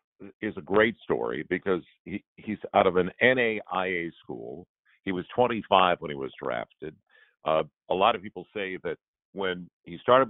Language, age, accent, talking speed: English, 60-79, American, 170 wpm